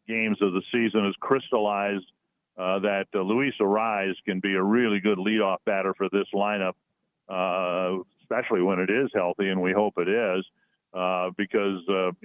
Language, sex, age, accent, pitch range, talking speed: English, male, 50-69, American, 100-115 Hz, 170 wpm